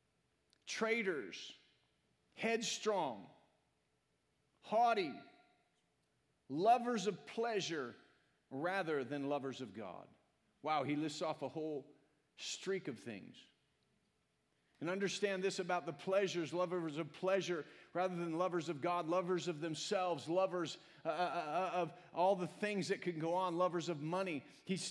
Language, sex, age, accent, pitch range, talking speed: English, male, 40-59, American, 175-210 Hz, 125 wpm